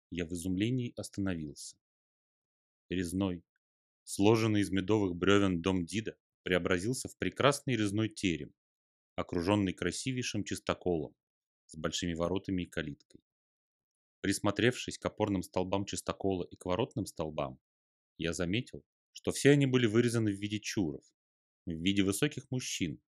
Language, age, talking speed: Russian, 30-49, 120 wpm